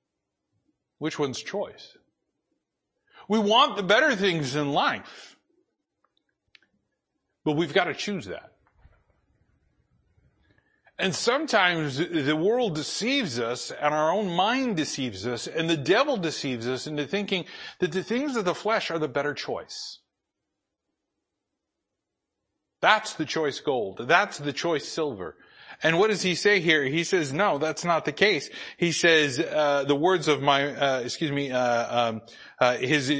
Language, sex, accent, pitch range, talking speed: English, male, American, 140-200 Hz, 145 wpm